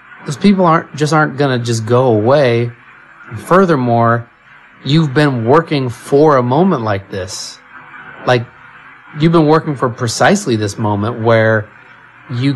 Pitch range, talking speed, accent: 105-130 Hz, 140 wpm, American